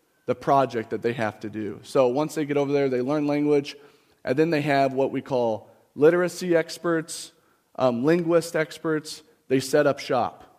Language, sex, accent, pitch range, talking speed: English, male, American, 115-145 Hz, 180 wpm